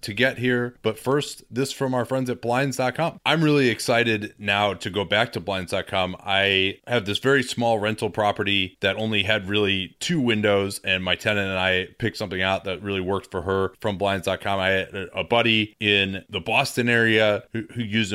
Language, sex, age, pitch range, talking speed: English, male, 30-49, 100-125 Hz, 195 wpm